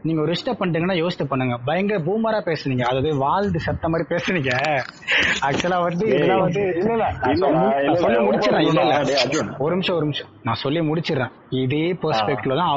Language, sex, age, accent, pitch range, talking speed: Tamil, male, 20-39, native, 135-180 Hz, 115 wpm